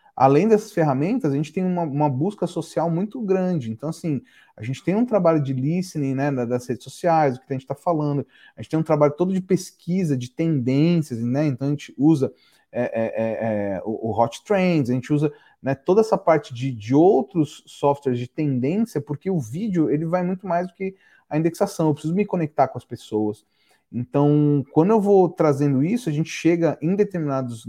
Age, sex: 30-49, male